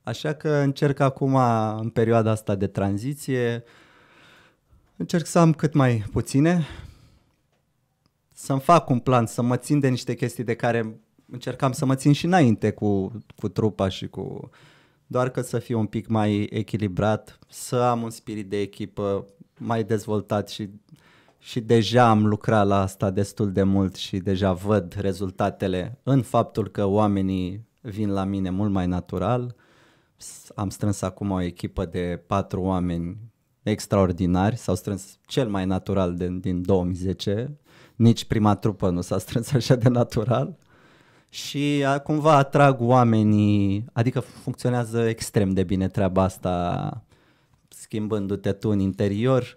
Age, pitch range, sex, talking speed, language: 20-39, 100-130 Hz, male, 145 wpm, Romanian